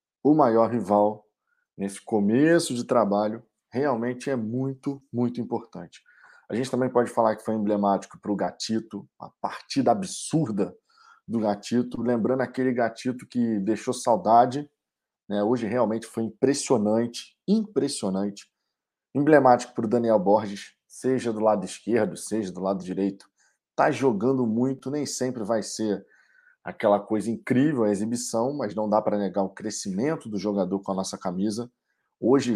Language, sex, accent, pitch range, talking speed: Portuguese, male, Brazilian, 105-125 Hz, 145 wpm